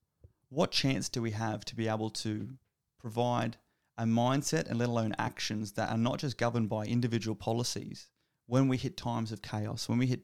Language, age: English, 30-49